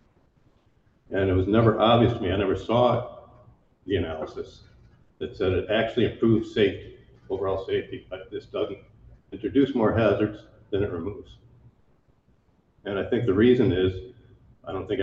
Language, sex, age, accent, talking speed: English, male, 60-79, American, 150 wpm